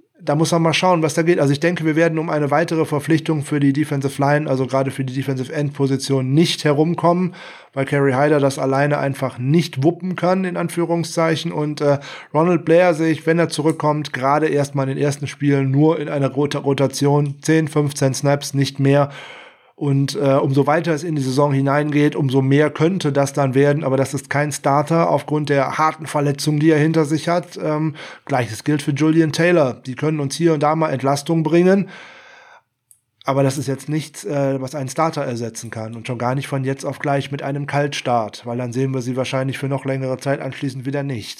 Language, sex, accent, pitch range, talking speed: German, male, German, 135-155 Hz, 210 wpm